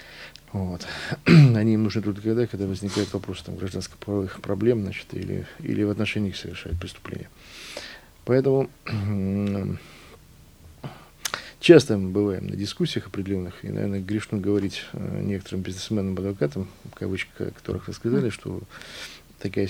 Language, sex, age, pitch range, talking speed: Russian, male, 50-69, 90-110 Hz, 115 wpm